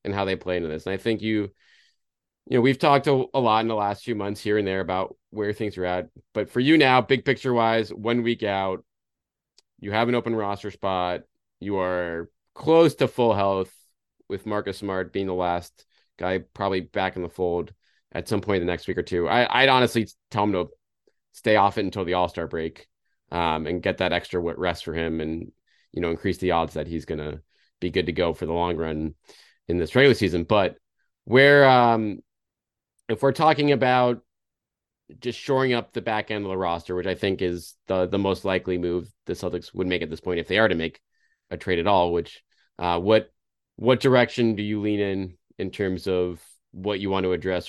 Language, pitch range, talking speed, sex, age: English, 85-110 Hz, 220 wpm, male, 30-49